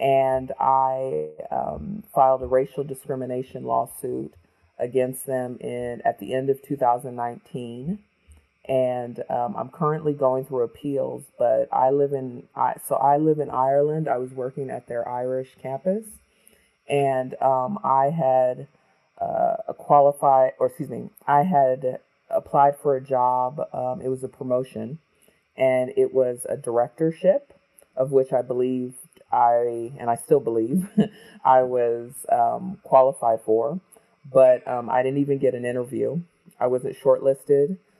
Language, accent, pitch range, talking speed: English, American, 125-150 Hz, 145 wpm